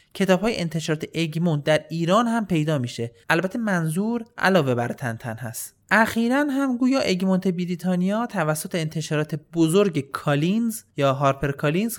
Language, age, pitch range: Persian, 30-49, 145-200 Hz